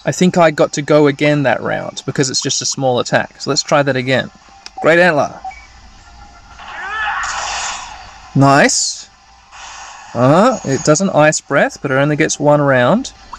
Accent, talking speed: Australian, 150 wpm